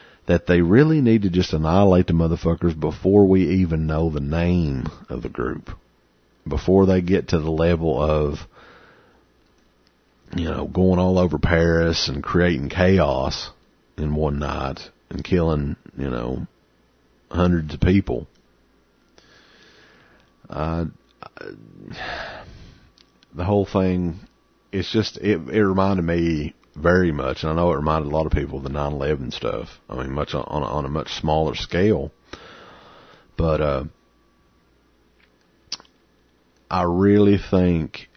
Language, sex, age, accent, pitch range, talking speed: English, male, 40-59, American, 75-90 Hz, 130 wpm